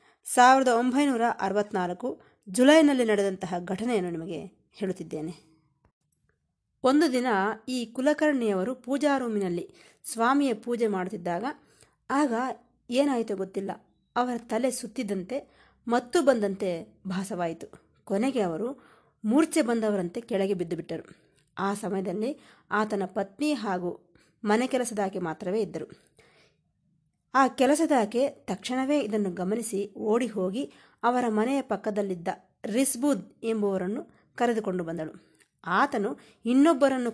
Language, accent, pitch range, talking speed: Kannada, native, 190-255 Hz, 90 wpm